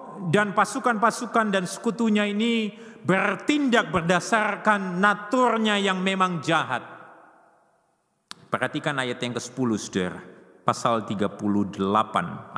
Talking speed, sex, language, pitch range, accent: 85 wpm, male, Indonesian, 155-215 Hz, native